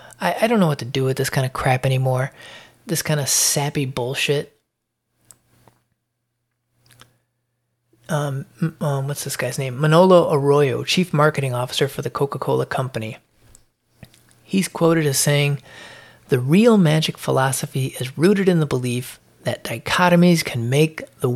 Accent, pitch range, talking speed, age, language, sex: American, 125-155 Hz, 140 wpm, 30-49, English, male